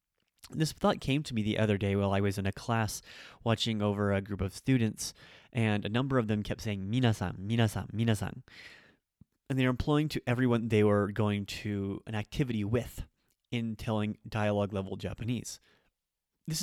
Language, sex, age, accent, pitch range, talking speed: English, male, 30-49, American, 100-120 Hz, 175 wpm